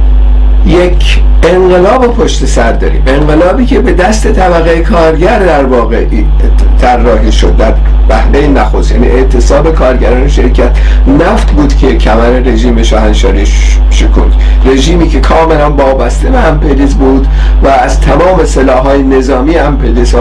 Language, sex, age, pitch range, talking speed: Persian, male, 50-69, 120-170 Hz, 125 wpm